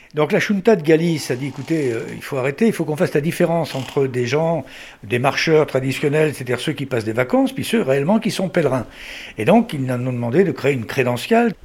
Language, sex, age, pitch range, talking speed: French, male, 60-79, 130-195 Hz, 235 wpm